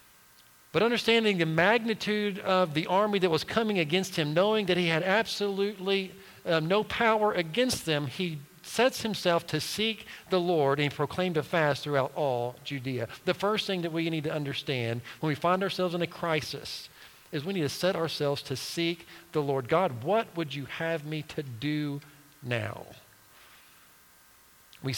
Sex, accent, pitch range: male, American, 145-195 Hz